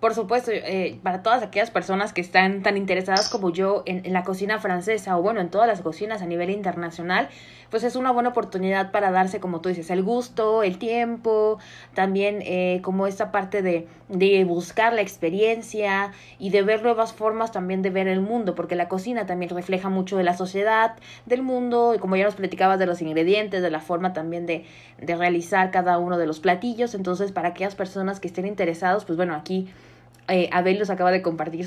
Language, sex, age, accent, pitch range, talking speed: Spanish, female, 20-39, Mexican, 180-225 Hz, 205 wpm